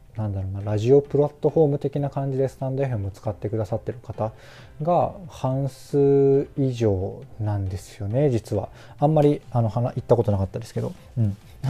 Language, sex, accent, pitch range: Japanese, male, native, 105-140 Hz